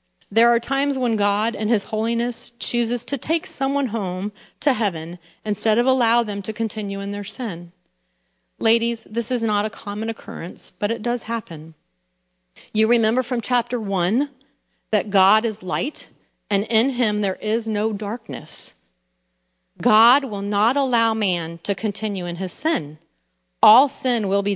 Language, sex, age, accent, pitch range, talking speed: English, female, 40-59, American, 170-235 Hz, 160 wpm